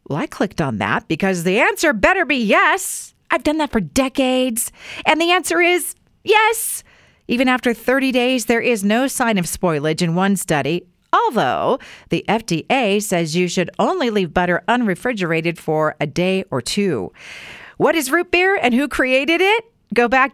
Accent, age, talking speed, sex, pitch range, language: American, 40-59, 175 wpm, female, 190-285 Hz, English